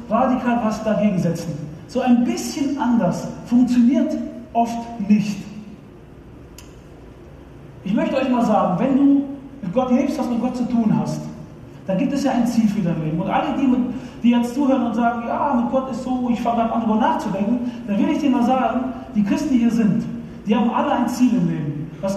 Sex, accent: male, German